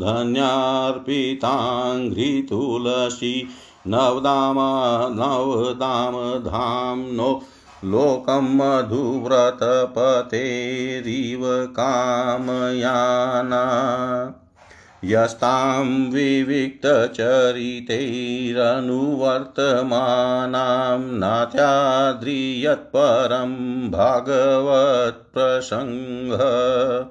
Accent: native